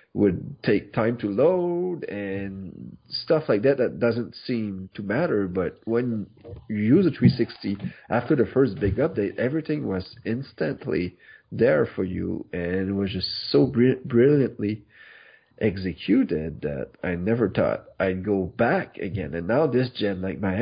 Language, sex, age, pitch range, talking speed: English, male, 40-59, 95-115 Hz, 150 wpm